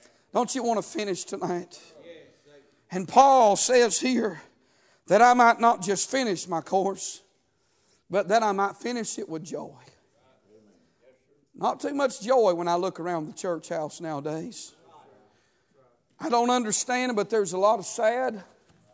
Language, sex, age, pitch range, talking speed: English, male, 50-69, 180-255 Hz, 150 wpm